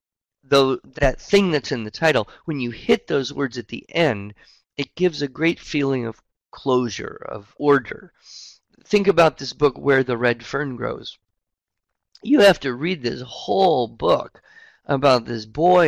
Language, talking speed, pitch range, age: English, 160 wpm, 115-155 Hz, 50-69